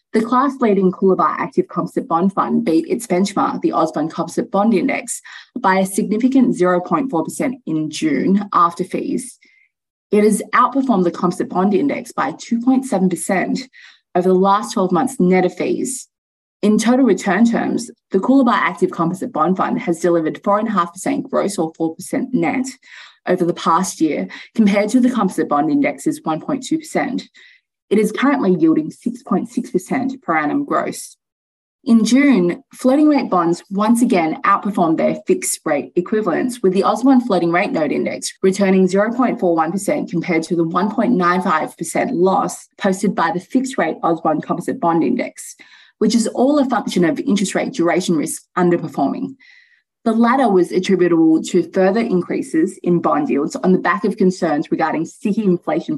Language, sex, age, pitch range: English, female, 20-39, 180-255 Hz